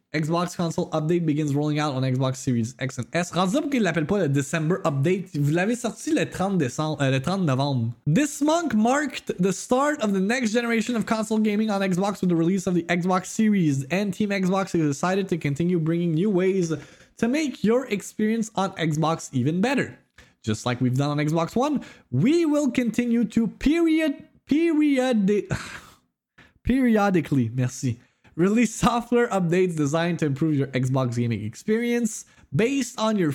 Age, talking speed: 20-39, 150 wpm